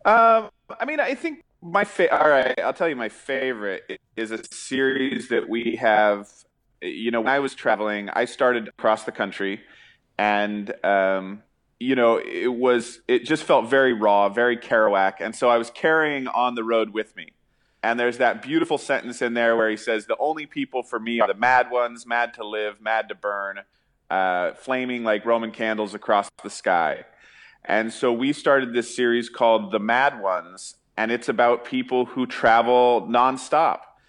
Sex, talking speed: male, 185 wpm